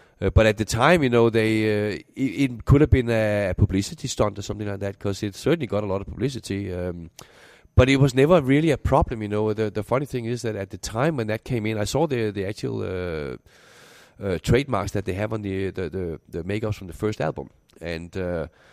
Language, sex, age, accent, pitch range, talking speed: English, male, 30-49, Danish, 100-125 Hz, 235 wpm